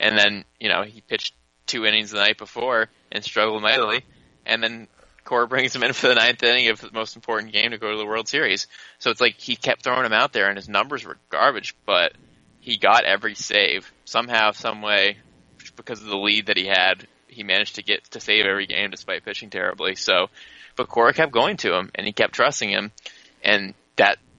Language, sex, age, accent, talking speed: English, male, 20-39, American, 220 wpm